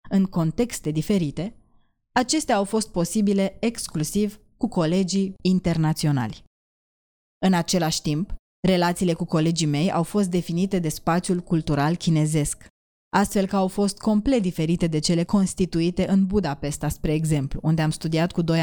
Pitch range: 165-200 Hz